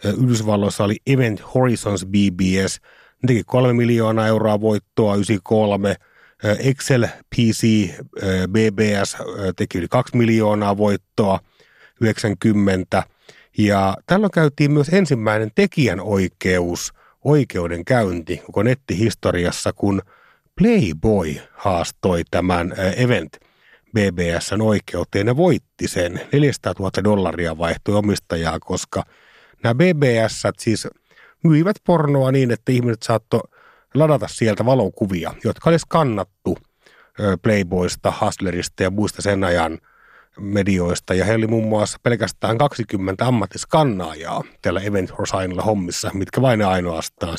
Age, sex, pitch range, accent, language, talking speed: 30-49, male, 95-120 Hz, native, Finnish, 105 wpm